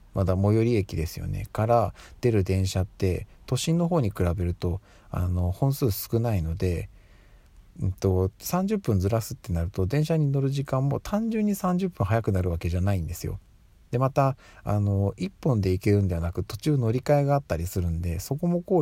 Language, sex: Japanese, male